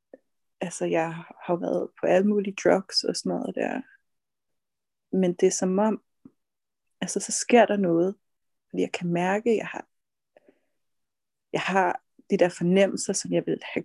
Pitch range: 185-220 Hz